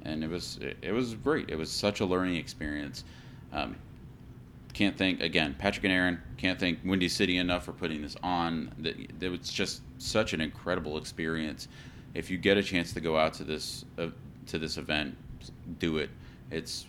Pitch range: 80-105 Hz